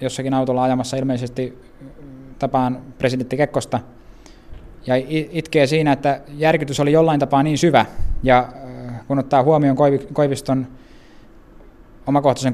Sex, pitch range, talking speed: male, 125-140 Hz, 110 wpm